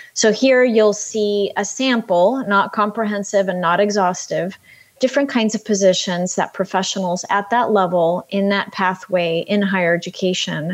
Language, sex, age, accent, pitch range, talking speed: English, female, 30-49, American, 185-220 Hz, 145 wpm